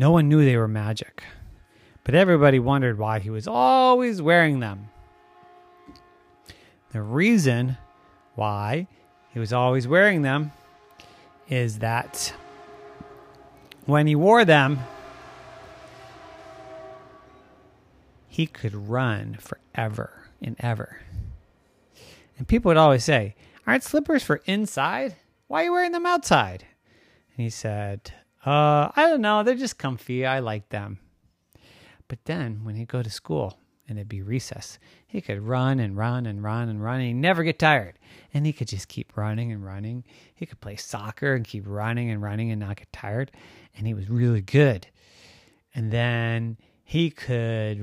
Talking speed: 145 wpm